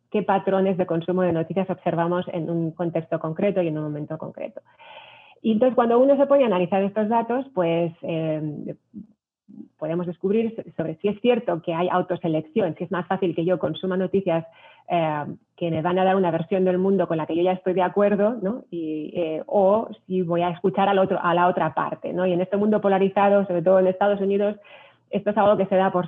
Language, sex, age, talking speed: Spanish, female, 30-49, 205 wpm